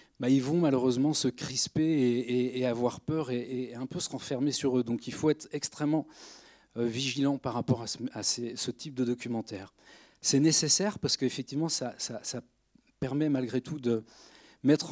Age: 40-59